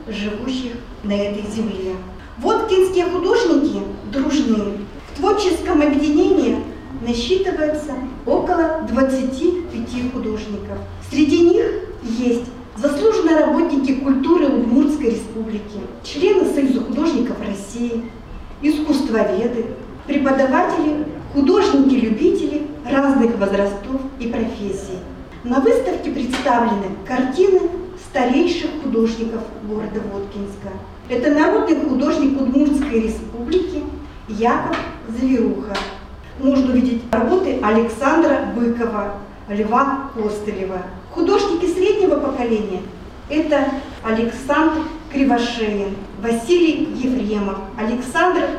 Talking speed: 80 wpm